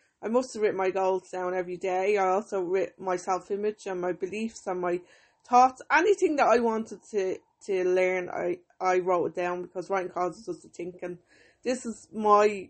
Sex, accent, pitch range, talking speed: female, British, 180-210 Hz, 200 wpm